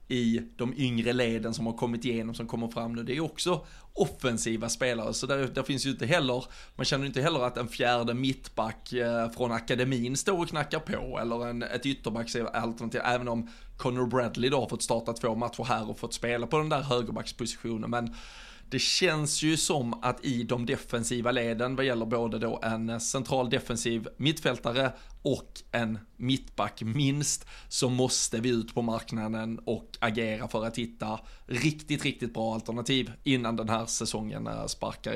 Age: 20-39